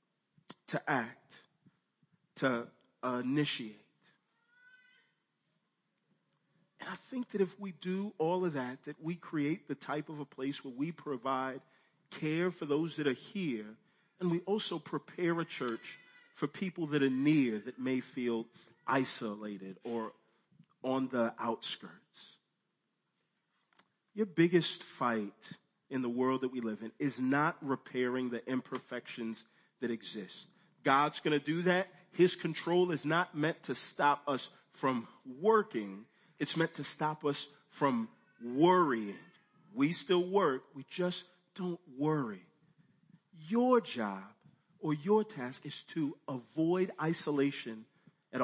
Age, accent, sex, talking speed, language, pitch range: 40-59, American, male, 130 wpm, English, 125-175 Hz